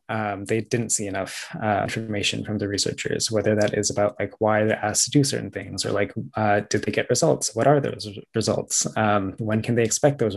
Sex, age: male, 20-39